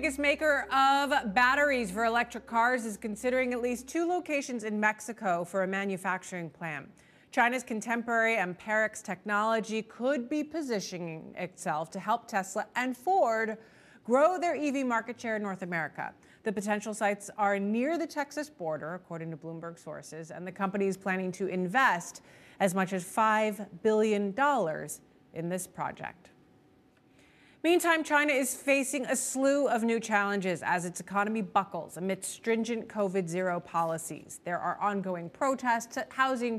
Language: English